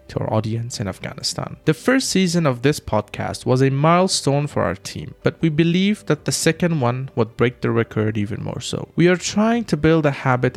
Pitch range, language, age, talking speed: 115-150 Hz, Persian, 20-39, 215 wpm